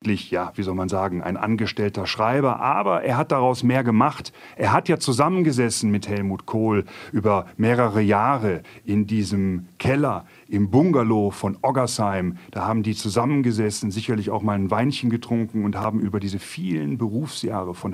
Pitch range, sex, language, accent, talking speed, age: 105-125 Hz, male, German, German, 160 wpm, 40-59